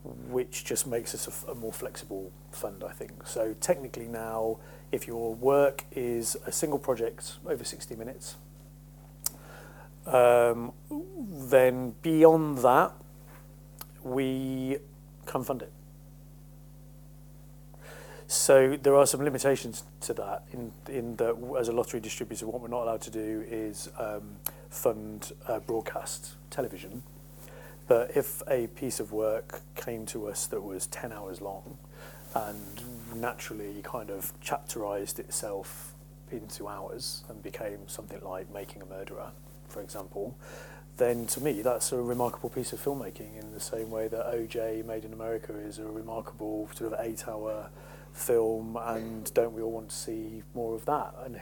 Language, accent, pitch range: English, British, 110-145 Hz